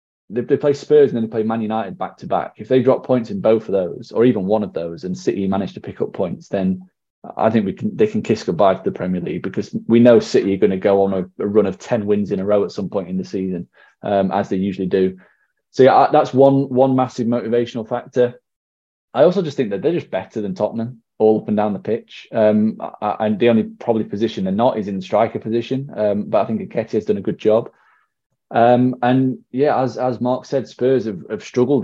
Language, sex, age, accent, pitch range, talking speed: English, male, 20-39, British, 100-125 Hz, 250 wpm